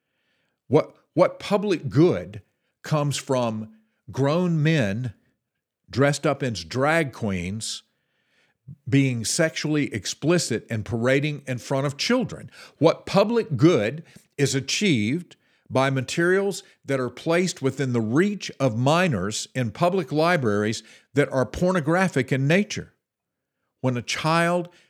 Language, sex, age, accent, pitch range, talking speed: English, male, 50-69, American, 130-175 Hz, 115 wpm